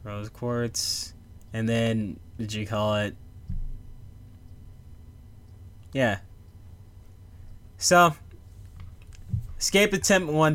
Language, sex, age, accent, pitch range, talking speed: English, male, 10-29, American, 90-110 Hz, 75 wpm